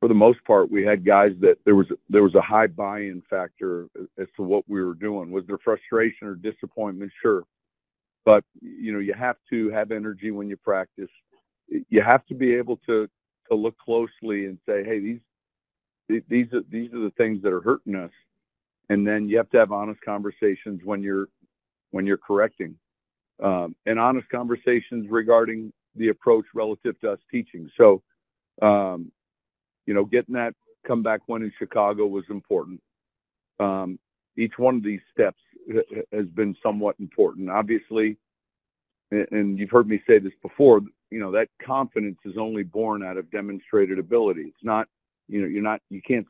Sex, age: male, 50-69